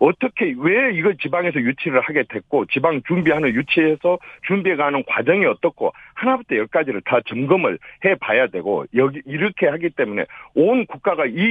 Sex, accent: male, native